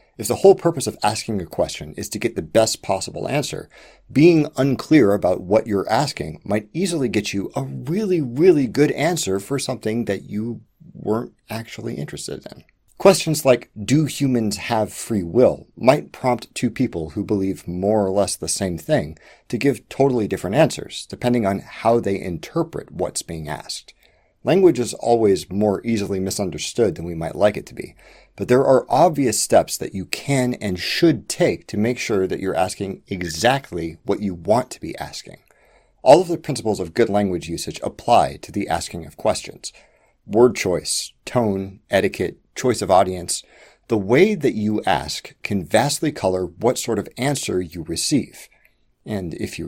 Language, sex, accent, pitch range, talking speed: English, male, American, 95-135 Hz, 175 wpm